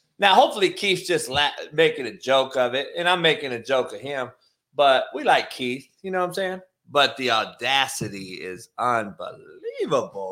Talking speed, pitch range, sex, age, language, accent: 180 wpm, 130-180 Hz, male, 30-49, English, American